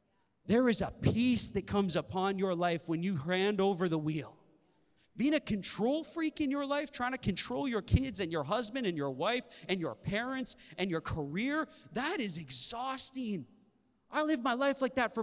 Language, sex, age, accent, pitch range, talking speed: English, male, 30-49, American, 160-225 Hz, 195 wpm